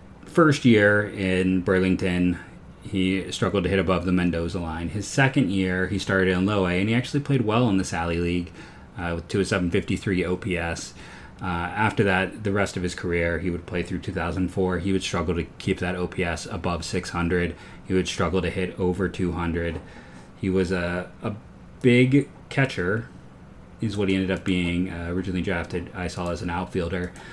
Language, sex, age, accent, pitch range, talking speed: English, male, 30-49, American, 90-100 Hz, 180 wpm